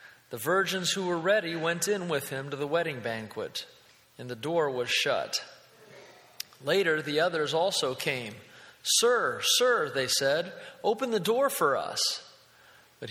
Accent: American